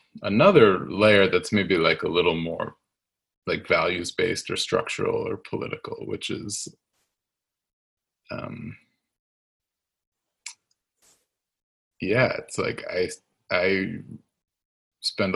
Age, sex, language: 20-39, male, English